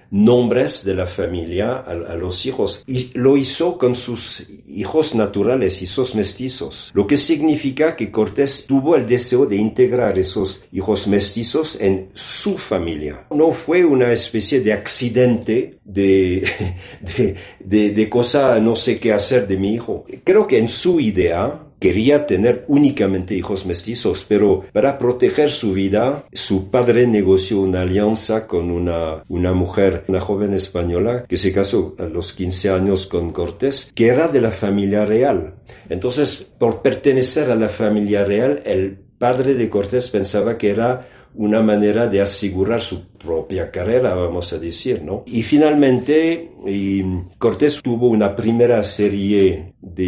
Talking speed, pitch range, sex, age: 155 wpm, 95-125 Hz, male, 50-69